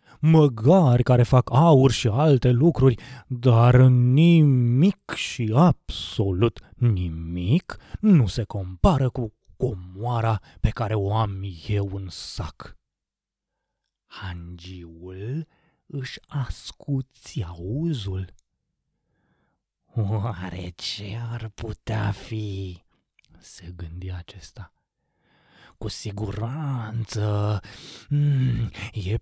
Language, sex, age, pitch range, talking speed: Romanian, male, 30-49, 95-125 Hz, 80 wpm